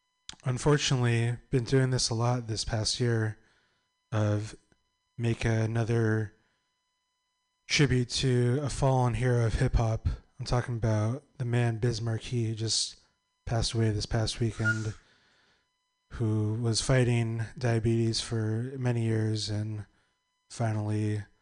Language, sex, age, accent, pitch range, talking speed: English, male, 20-39, American, 110-130 Hz, 120 wpm